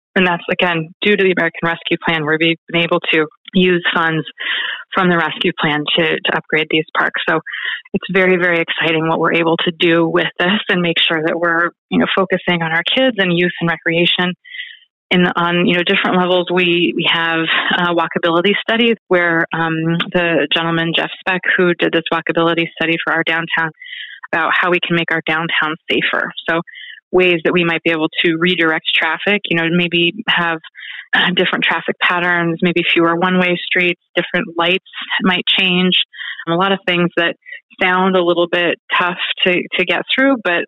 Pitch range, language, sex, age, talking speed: 165-185 Hz, English, female, 20-39, 185 wpm